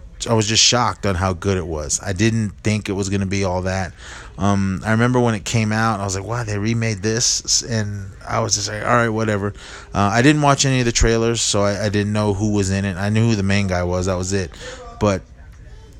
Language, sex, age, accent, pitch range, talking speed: English, male, 30-49, American, 95-115 Hz, 260 wpm